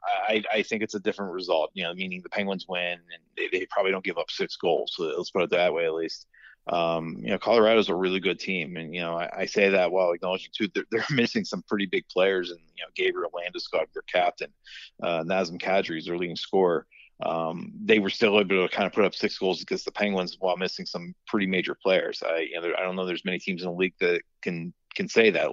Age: 30-49